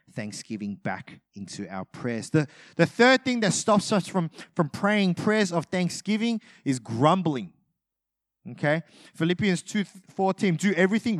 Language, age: English, 30-49